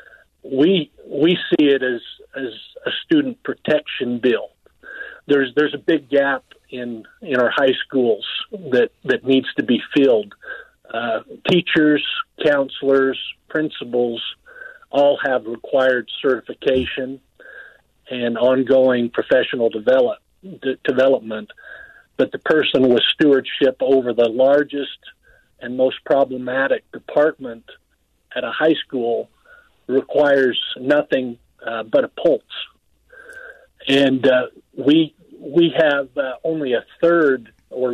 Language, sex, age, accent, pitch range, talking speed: English, male, 50-69, American, 130-175 Hz, 115 wpm